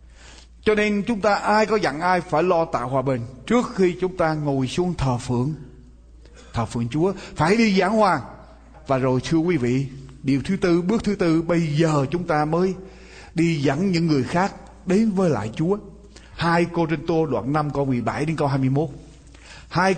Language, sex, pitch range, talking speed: Vietnamese, male, 155-210 Hz, 195 wpm